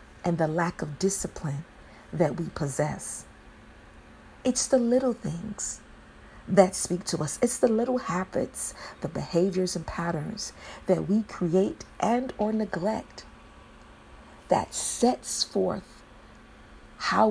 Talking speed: 120 wpm